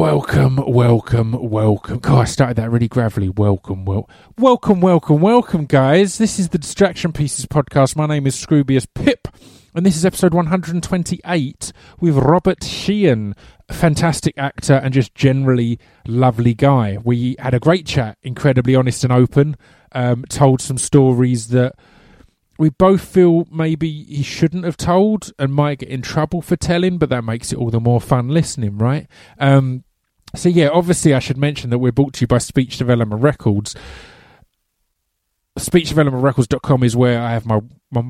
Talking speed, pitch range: 165 wpm, 115-150 Hz